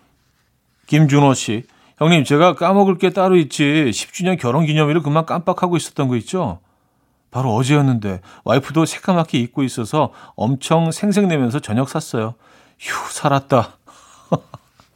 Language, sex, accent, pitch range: Korean, male, native, 115-155 Hz